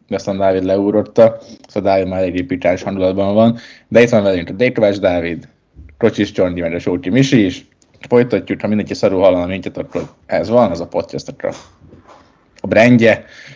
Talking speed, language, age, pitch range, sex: 175 wpm, Hungarian, 20-39, 95-120 Hz, male